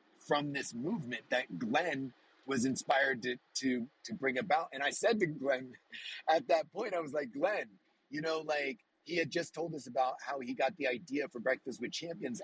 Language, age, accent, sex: English, 30-49, American, male